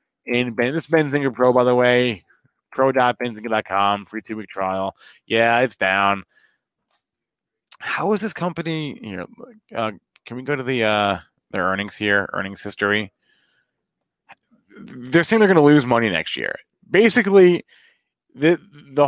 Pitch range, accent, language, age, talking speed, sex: 100-155 Hz, American, English, 20-39, 150 wpm, male